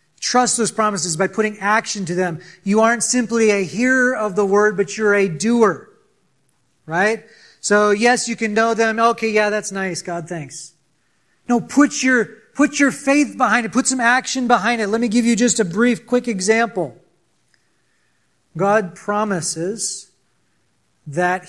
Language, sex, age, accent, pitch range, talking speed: English, male, 40-59, American, 155-215 Hz, 160 wpm